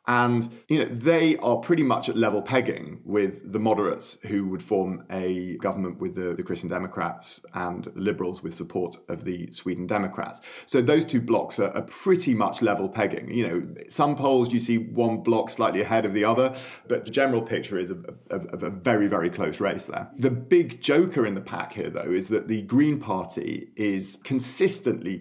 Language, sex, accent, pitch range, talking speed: English, male, British, 95-120 Hz, 200 wpm